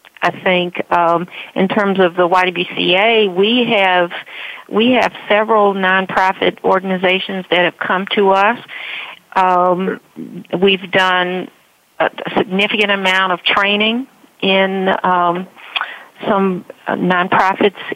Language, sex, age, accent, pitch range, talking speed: English, female, 50-69, American, 180-210 Hz, 105 wpm